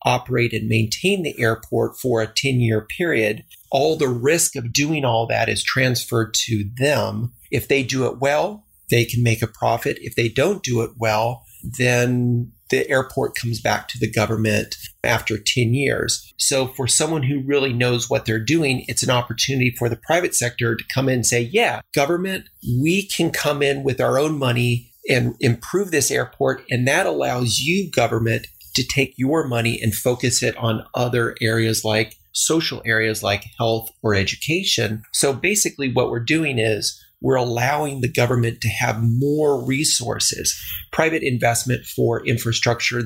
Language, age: English, 40-59